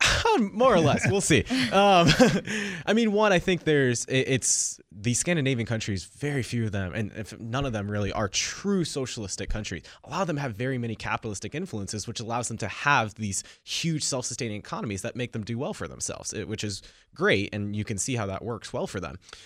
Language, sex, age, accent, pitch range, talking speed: English, male, 20-39, American, 100-135 Hz, 210 wpm